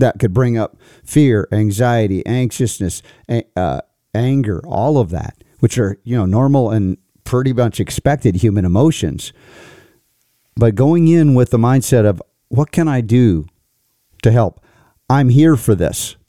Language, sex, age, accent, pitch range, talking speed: English, male, 50-69, American, 100-125 Hz, 145 wpm